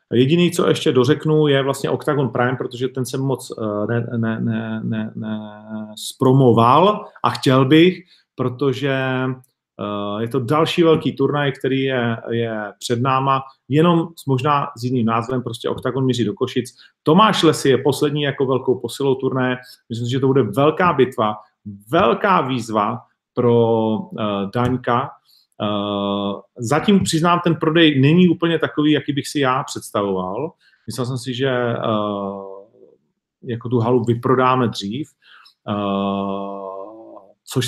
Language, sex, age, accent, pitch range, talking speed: Czech, male, 40-59, native, 120-145 Hz, 130 wpm